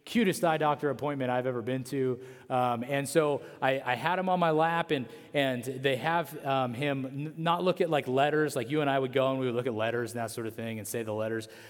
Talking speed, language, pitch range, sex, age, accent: 255 wpm, English, 130-180 Hz, male, 30-49, American